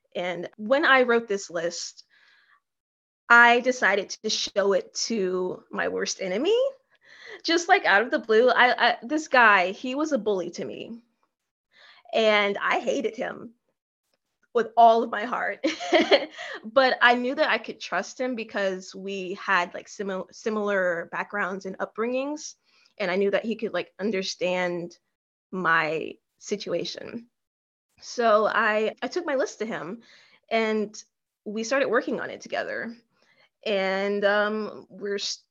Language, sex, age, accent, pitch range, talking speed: English, female, 20-39, American, 200-255 Hz, 145 wpm